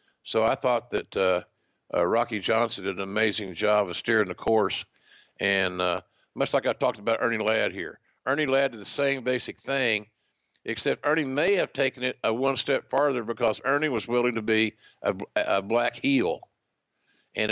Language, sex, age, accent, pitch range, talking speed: English, male, 50-69, American, 110-135 Hz, 185 wpm